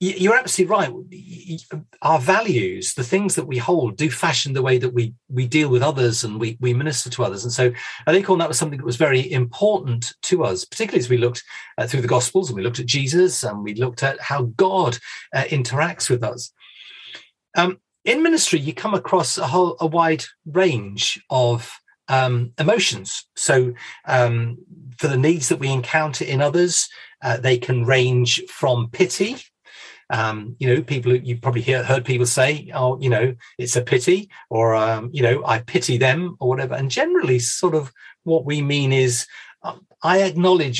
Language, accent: English, British